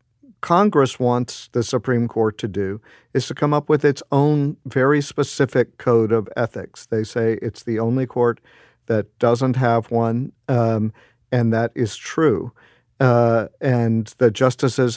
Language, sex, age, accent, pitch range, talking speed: English, male, 50-69, American, 115-130 Hz, 150 wpm